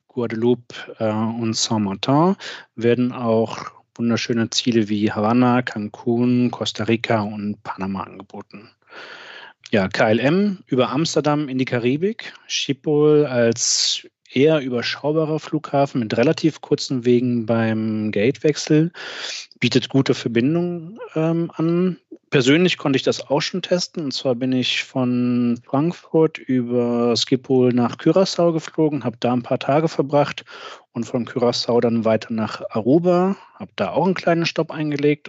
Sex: male